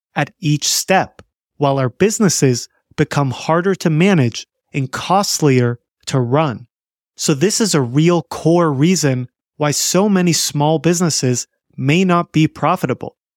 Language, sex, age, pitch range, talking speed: English, male, 30-49, 140-175 Hz, 135 wpm